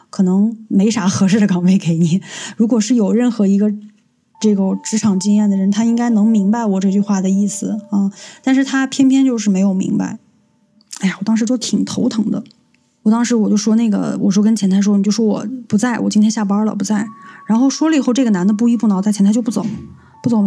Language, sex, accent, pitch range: Chinese, female, native, 205-230 Hz